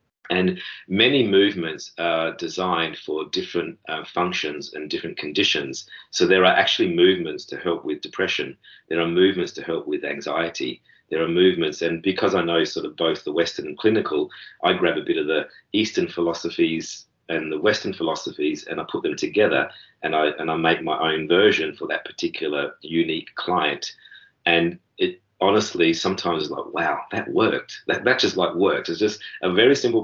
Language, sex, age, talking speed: English, male, 40-59, 180 wpm